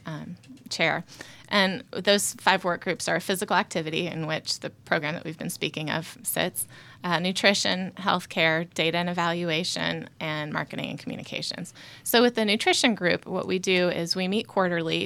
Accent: American